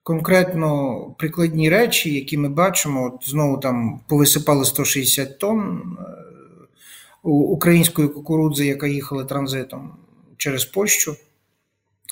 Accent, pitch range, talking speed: native, 145-175 Hz, 95 wpm